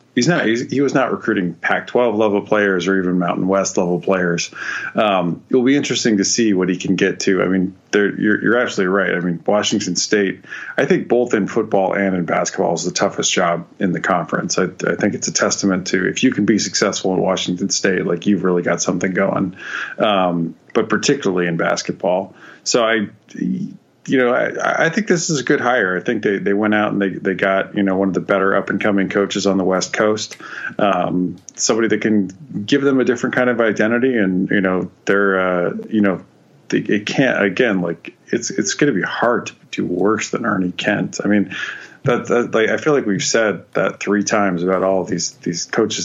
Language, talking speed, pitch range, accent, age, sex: English, 220 wpm, 95-110 Hz, American, 30-49, male